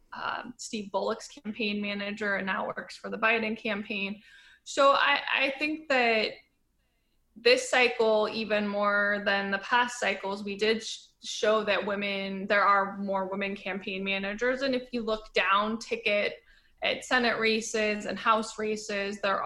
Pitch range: 200-230 Hz